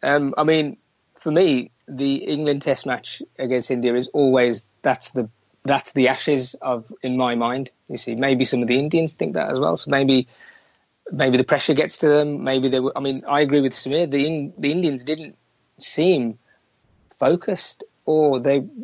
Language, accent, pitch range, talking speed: English, British, 130-160 Hz, 185 wpm